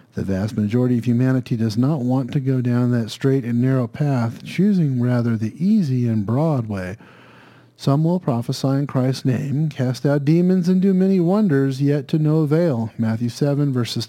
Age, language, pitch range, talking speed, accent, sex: 40-59, English, 125-160 Hz, 185 wpm, American, male